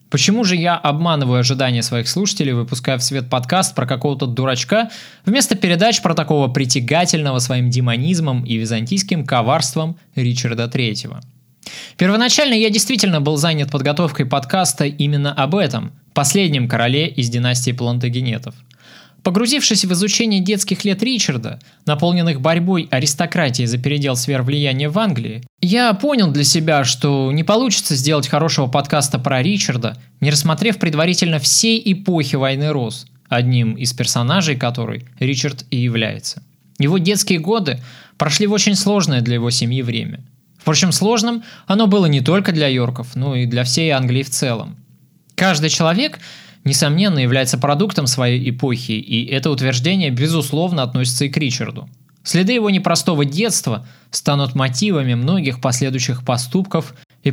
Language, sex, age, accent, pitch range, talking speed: Russian, male, 20-39, native, 125-180 Hz, 140 wpm